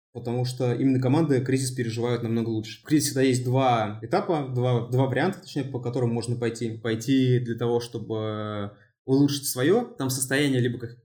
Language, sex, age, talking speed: Russian, male, 20-39, 175 wpm